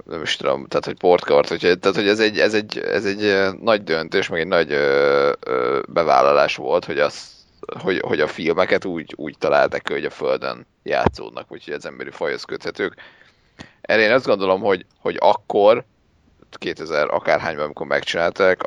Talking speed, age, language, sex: 160 wpm, 30-49, Hungarian, male